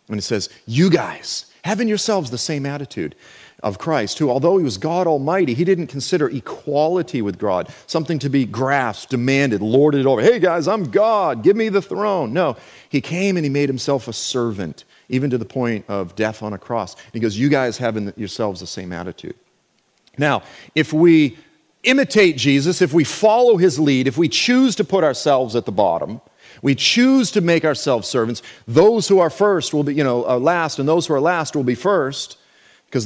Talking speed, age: 200 wpm, 40-59